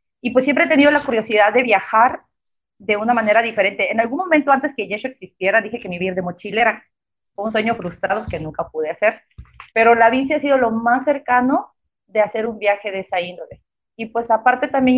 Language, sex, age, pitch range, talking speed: Spanish, female, 30-49, 200-245 Hz, 210 wpm